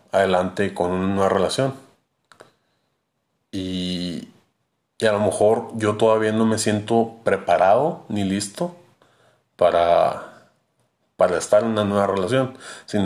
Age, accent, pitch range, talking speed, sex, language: 30-49, Mexican, 90-105 Hz, 120 wpm, male, Spanish